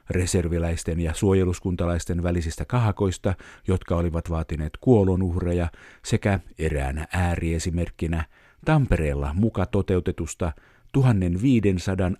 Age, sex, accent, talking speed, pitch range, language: 50-69, male, native, 80 wpm, 85-110 Hz, Finnish